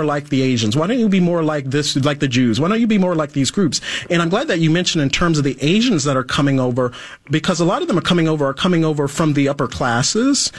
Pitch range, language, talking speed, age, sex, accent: 135-160 Hz, English, 290 wpm, 40-59, male, American